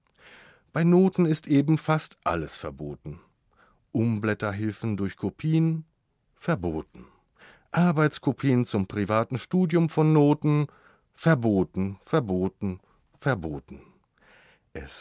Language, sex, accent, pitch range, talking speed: German, male, German, 95-135 Hz, 85 wpm